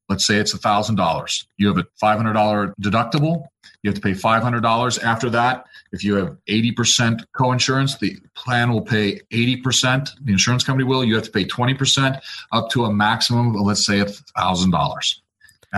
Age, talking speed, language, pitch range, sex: 40-59, 165 wpm, English, 105-130 Hz, male